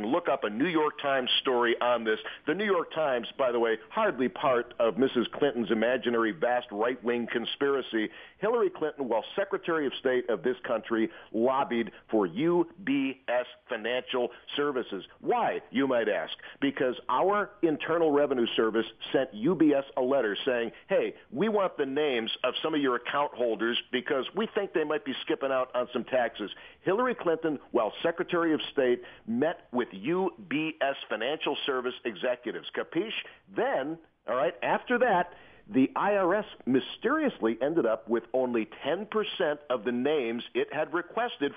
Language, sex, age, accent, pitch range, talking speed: English, male, 50-69, American, 120-180 Hz, 155 wpm